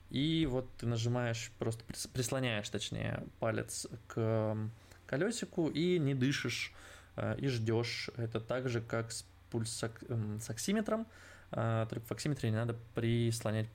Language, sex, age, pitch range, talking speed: Russian, male, 20-39, 110-125 Hz, 120 wpm